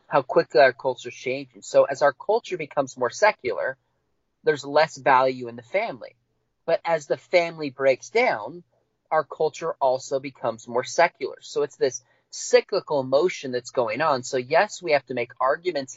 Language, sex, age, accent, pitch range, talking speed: English, male, 30-49, American, 125-170 Hz, 175 wpm